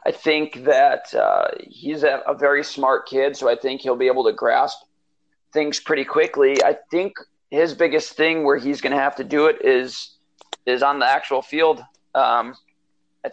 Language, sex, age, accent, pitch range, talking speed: English, male, 40-59, American, 130-150 Hz, 190 wpm